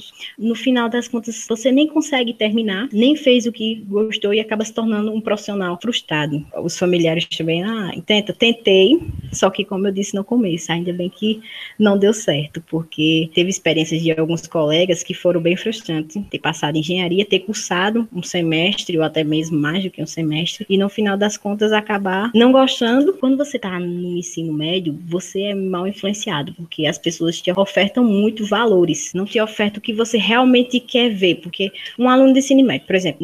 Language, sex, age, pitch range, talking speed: Portuguese, female, 20-39, 175-220 Hz, 195 wpm